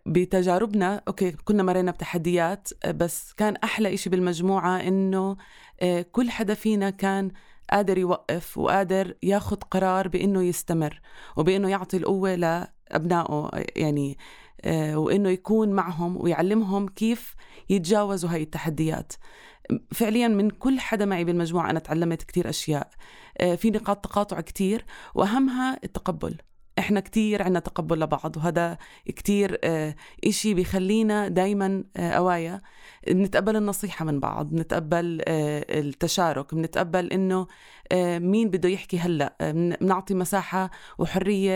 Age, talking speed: 20-39, 110 wpm